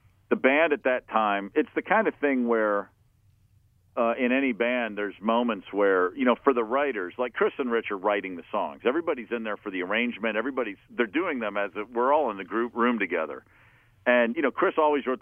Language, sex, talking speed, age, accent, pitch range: English, male, 220 wpm, 50-69, American, 105-130 Hz